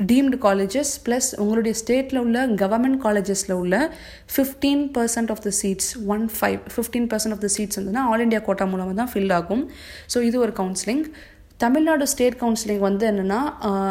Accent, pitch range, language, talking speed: native, 200-240 Hz, Tamil, 155 wpm